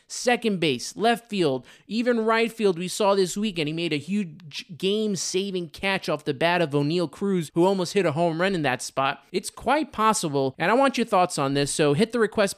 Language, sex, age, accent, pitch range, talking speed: English, male, 20-39, American, 155-205 Hz, 225 wpm